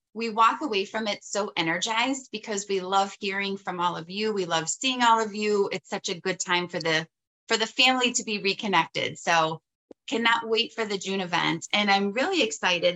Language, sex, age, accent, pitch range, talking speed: English, female, 20-39, American, 180-230 Hz, 210 wpm